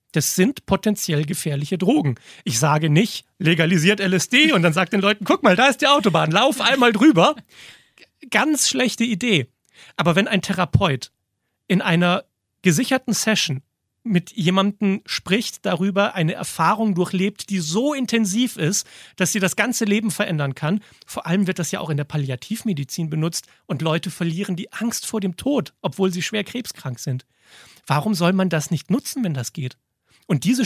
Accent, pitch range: German, 160-215 Hz